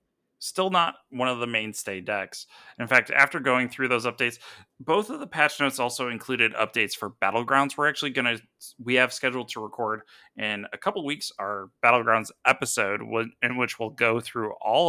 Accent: American